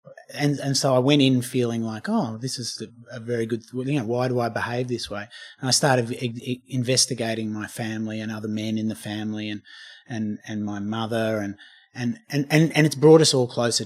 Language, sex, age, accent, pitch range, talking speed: English, male, 30-49, Australian, 115-135 Hz, 230 wpm